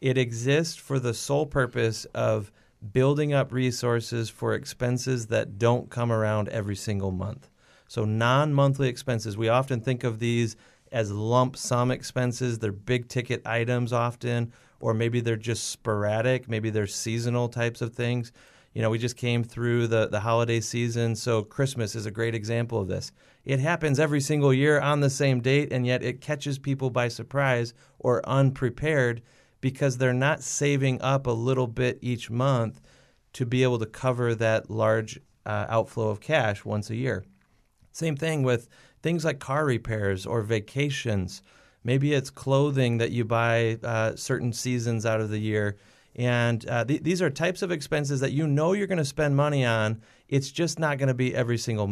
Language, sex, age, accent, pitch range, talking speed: English, male, 30-49, American, 115-135 Hz, 175 wpm